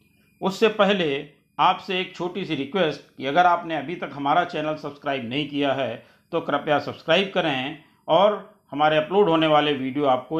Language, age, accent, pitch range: Hindi, 50-69, native, 145-200 Hz